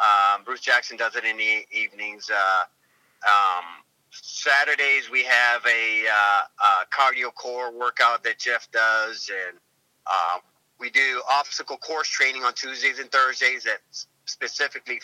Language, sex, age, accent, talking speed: English, male, 30-49, American, 140 wpm